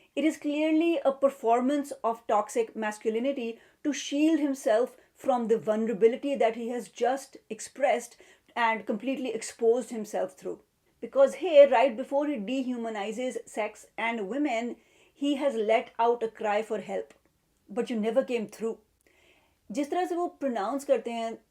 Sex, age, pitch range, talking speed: female, 30-49, 205-270 Hz, 135 wpm